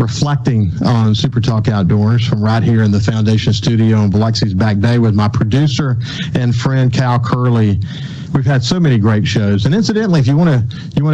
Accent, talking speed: American, 200 wpm